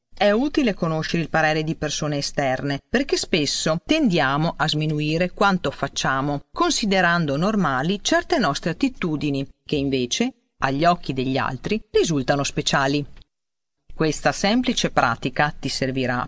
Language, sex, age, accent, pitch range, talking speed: Italian, female, 40-59, native, 135-200 Hz, 120 wpm